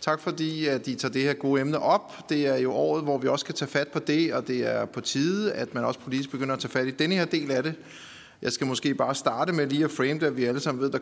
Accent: native